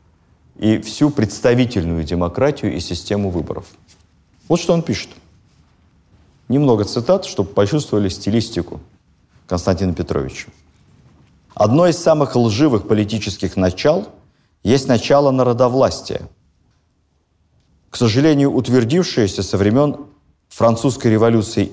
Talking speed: 95 wpm